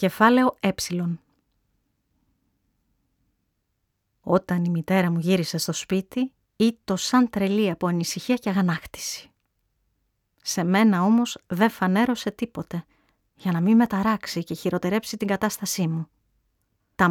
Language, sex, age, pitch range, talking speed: Greek, female, 30-49, 170-220 Hz, 110 wpm